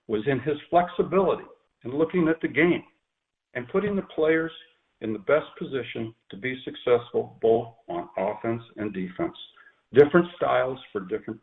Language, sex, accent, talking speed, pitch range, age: English, male, American, 150 wpm, 105-145 Hz, 60-79